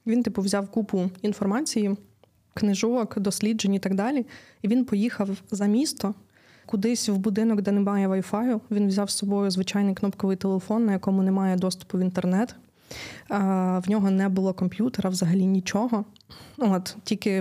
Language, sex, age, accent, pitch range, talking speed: Ukrainian, female, 20-39, native, 190-210 Hz, 150 wpm